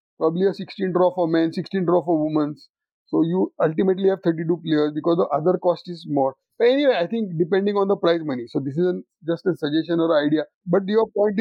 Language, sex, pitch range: English, male, 175-220 Hz